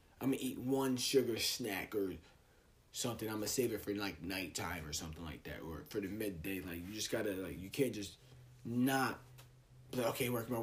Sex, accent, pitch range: male, American, 105-135 Hz